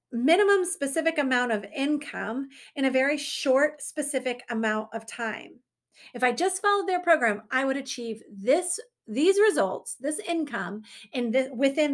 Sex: female